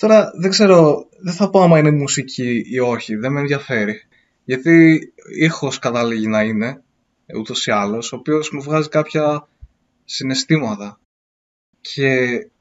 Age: 20-39